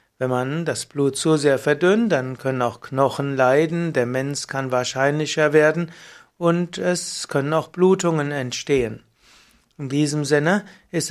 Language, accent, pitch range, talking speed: German, German, 135-165 Hz, 145 wpm